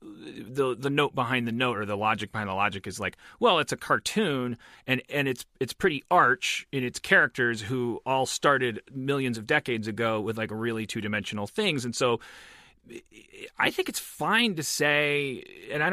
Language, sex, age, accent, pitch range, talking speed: English, male, 30-49, American, 115-140 Hz, 185 wpm